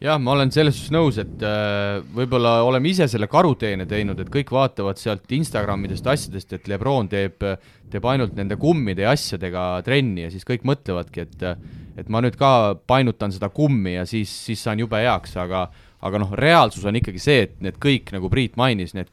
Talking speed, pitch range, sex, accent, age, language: 190 wpm, 95-125 Hz, male, Finnish, 30-49, English